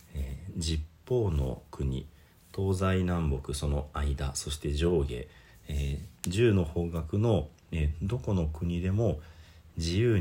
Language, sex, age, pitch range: Japanese, male, 40-59, 75-95 Hz